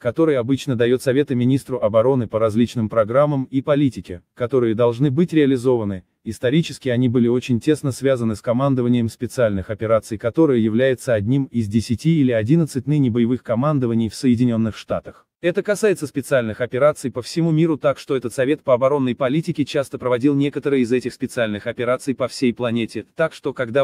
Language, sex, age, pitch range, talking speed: Russian, male, 20-39, 115-150 Hz, 165 wpm